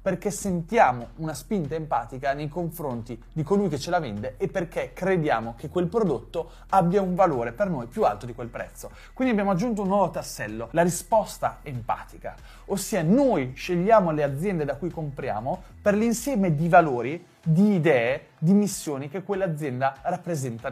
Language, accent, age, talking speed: Italian, native, 30-49, 165 wpm